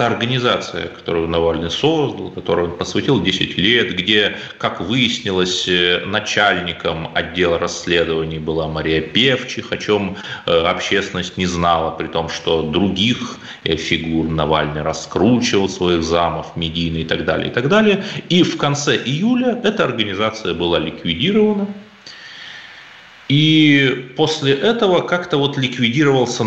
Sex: male